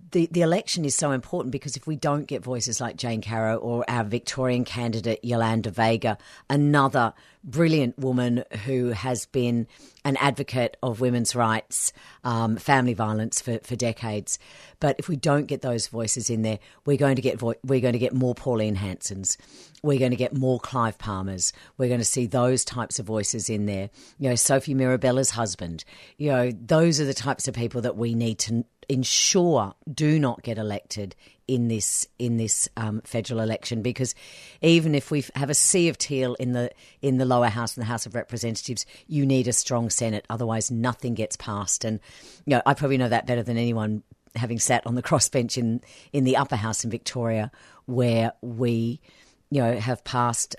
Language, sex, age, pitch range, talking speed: English, female, 50-69, 115-135 Hz, 195 wpm